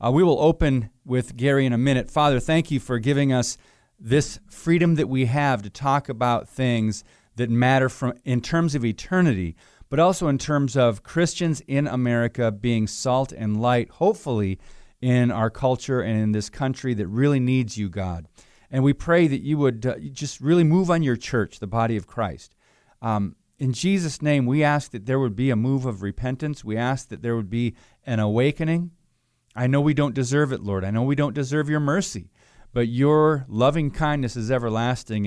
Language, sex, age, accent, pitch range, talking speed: English, male, 40-59, American, 115-140 Hz, 195 wpm